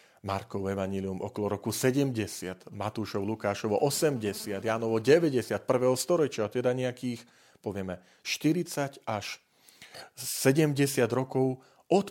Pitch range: 105-140 Hz